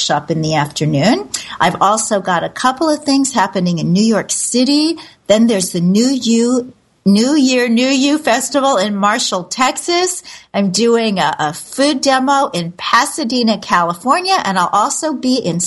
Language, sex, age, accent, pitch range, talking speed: English, female, 50-69, American, 185-255 Hz, 165 wpm